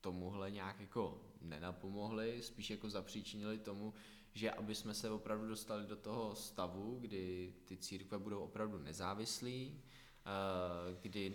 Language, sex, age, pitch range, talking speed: Czech, male, 20-39, 100-110 Hz, 120 wpm